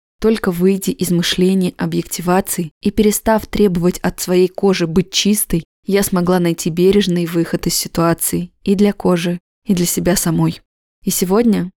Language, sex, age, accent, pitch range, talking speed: Russian, female, 20-39, native, 170-195 Hz, 150 wpm